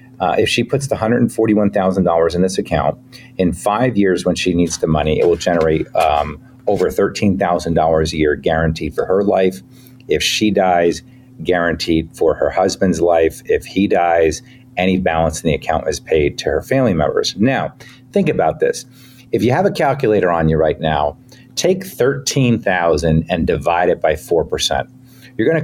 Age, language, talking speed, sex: 40-59, English, 170 wpm, male